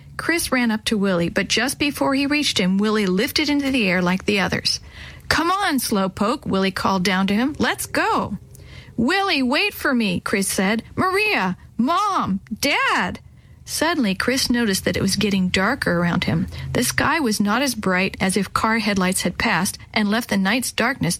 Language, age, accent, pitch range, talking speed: English, 50-69, American, 190-260 Hz, 185 wpm